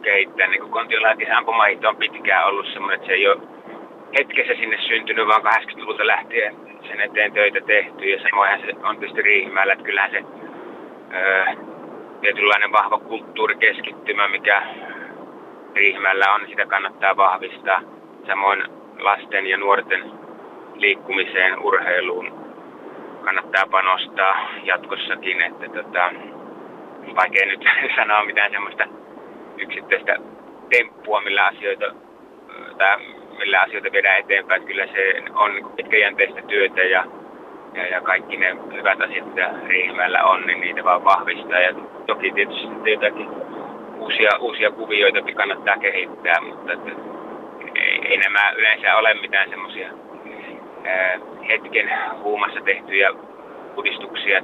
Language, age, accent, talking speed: Finnish, 30-49, native, 115 wpm